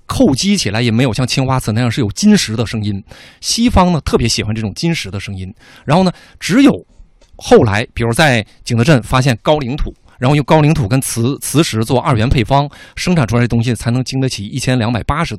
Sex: male